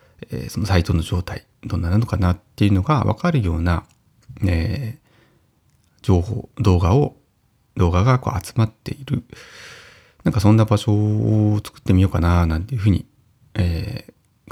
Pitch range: 90-125 Hz